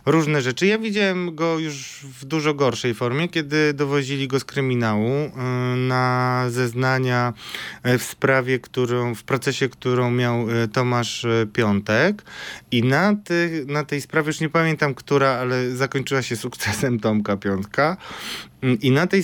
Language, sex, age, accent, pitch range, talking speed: Polish, male, 20-39, native, 125-160 Hz, 140 wpm